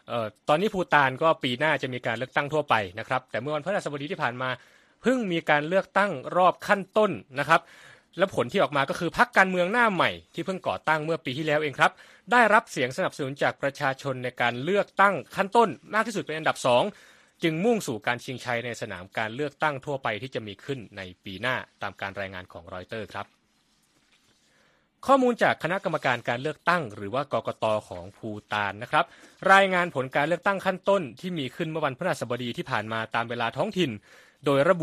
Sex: male